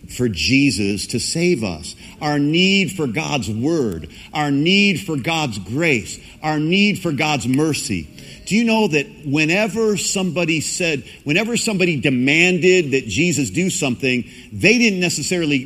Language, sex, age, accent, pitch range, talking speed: English, male, 50-69, American, 135-190 Hz, 140 wpm